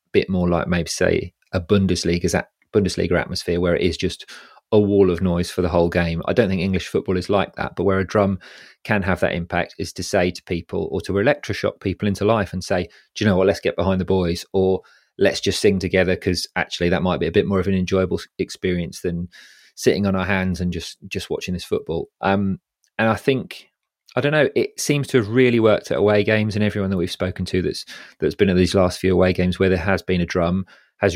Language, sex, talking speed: English, male, 240 wpm